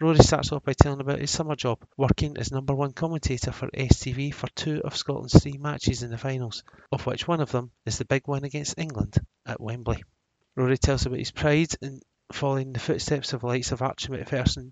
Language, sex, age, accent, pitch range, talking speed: English, male, 30-49, British, 120-145 Hz, 215 wpm